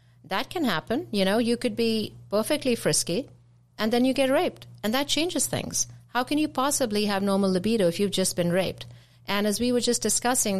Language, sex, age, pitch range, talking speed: English, female, 50-69, 160-225 Hz, 210 wpm